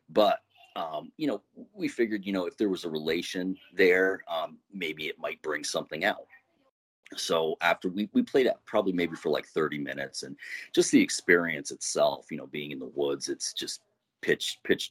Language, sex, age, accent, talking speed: English, male, 30-49, American, 195 wpm